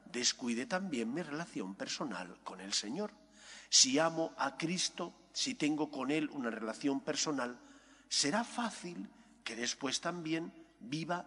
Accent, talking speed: Spanish, 135 wpm